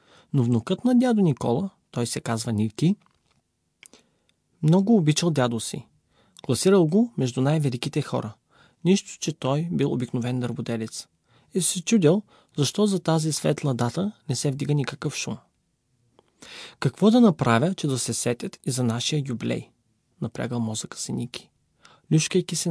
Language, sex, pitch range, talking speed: English, male, 130-180 Hz, 145 wpm